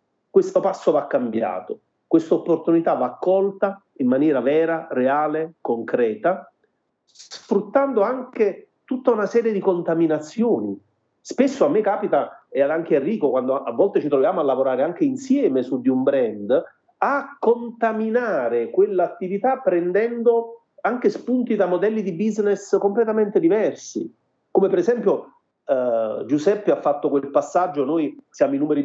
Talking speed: 135 wpm